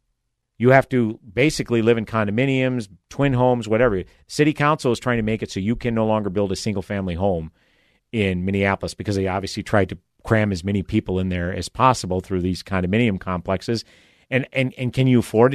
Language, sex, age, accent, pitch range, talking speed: English, male, 50-69, American, 100-130 Hz, 195 wpm